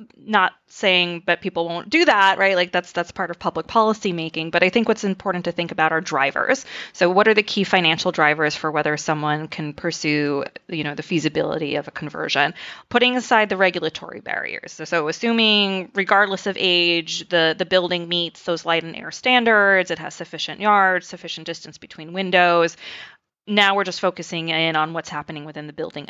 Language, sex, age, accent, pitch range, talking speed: English, female, 20-39, American, 160-190 Hz, 195 wpm